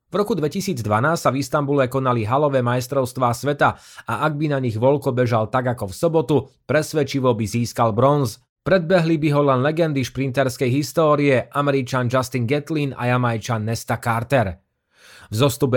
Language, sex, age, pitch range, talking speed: Slovak, male, 30-49, 120-150 Hz, 150 wpm